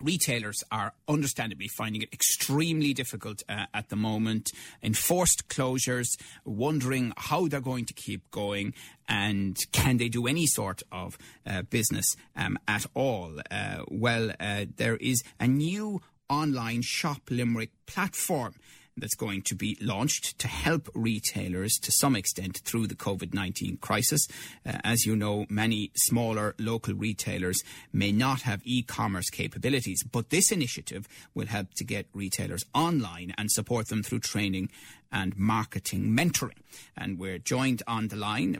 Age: 30-49